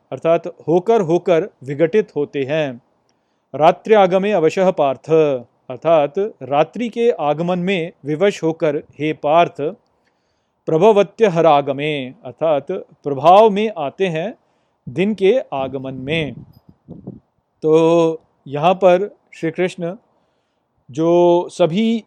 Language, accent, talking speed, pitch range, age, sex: Hindi, native, 100 wpm, 155-190 Hz, 40-59, male